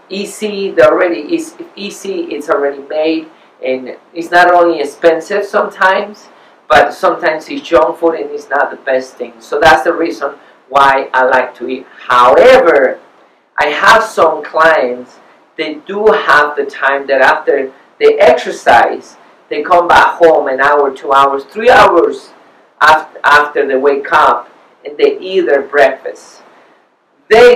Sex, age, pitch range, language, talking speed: male, 40-59, 140-210 Hz, English, 145 wpm